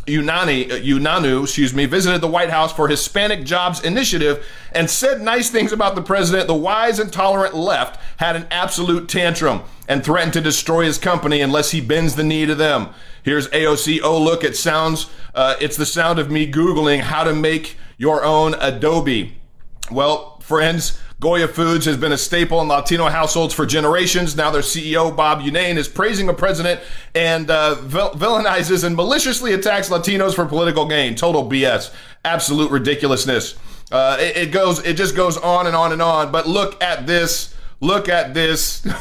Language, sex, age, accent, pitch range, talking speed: English, male, 40-59, American, 145-180 Hz, 180 wpm